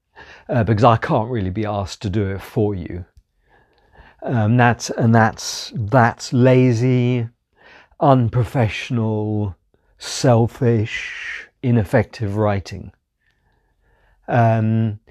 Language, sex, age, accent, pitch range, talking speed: English, male, 50-69, British, 110-130 Hz, 90 wpm